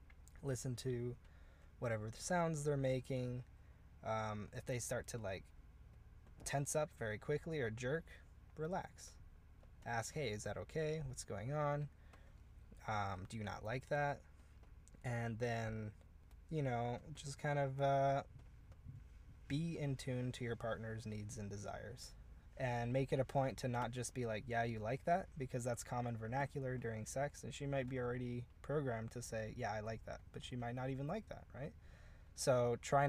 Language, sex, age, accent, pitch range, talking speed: English, male, 20-39, American, 100-130 Hz, 170 wpm